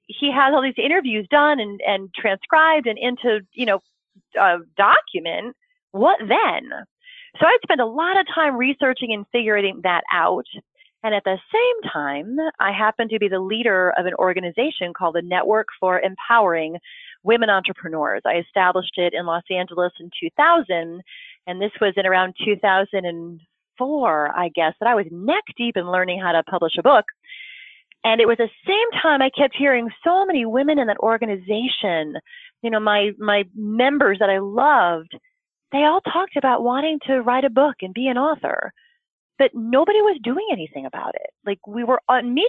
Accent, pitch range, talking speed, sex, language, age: American, 185-295 Hz, 180 wpm, female, English, 30-49